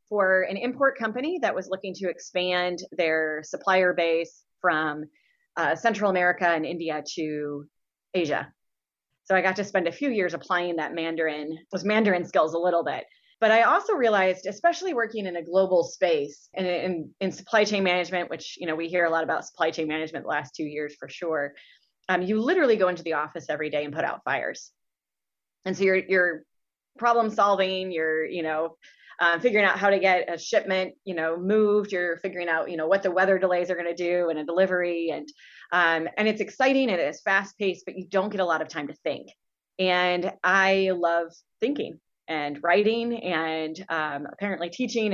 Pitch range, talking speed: 165-210 Hz, 200 wpm